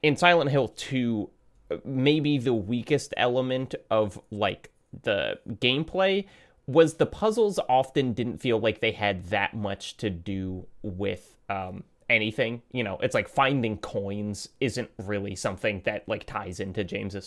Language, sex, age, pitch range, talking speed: English, male, 20-39, 115-155 Hz, 145 wpm